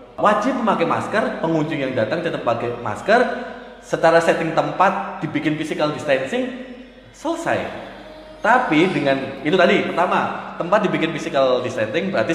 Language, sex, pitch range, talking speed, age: Indonesian, male, 135-175 Hz, 125 wpm, 30-49